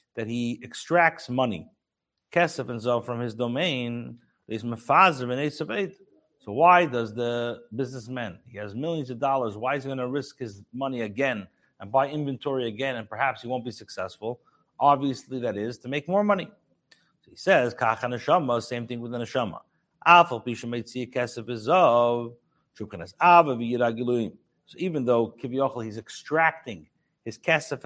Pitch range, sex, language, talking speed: 120-150 Hz, male, English, 140 wpm